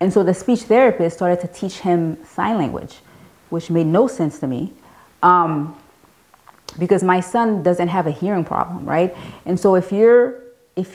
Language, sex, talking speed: English, female, 175 wpm